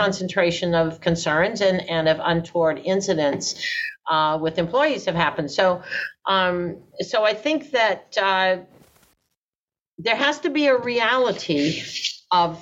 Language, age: English, 50-69